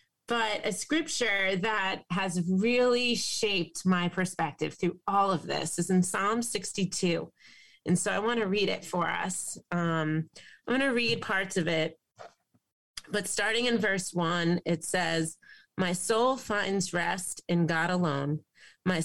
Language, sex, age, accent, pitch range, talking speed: English, female, 30-49, American, 170-210 Hz, 155 wpm